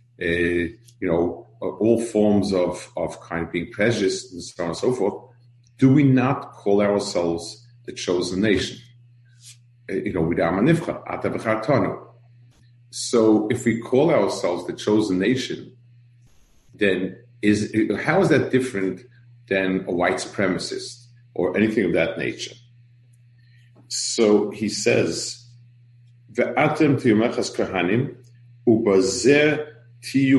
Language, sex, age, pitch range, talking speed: English, male, 50-69, 105-120 Hz, 110 wpm